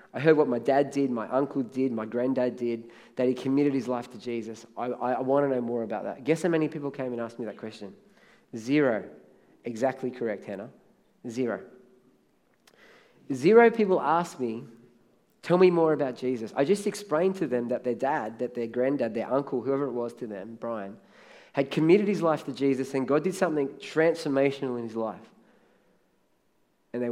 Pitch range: 125-155 Hz